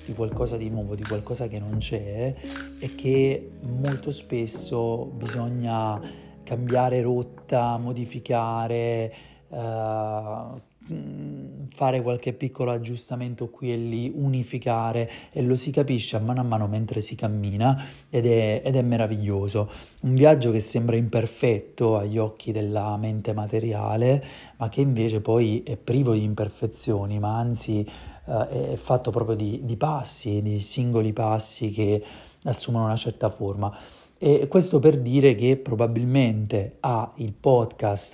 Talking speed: 135 wpm